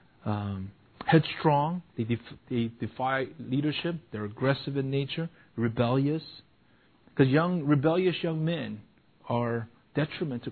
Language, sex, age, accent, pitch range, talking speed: English, male, 40-59, American, 115-145 Hz, 115 wpm